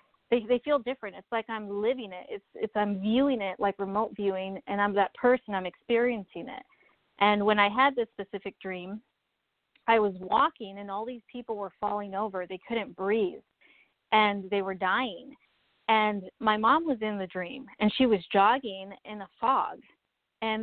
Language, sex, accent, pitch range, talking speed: English, female, American, 200-245 Hz, 185 wpm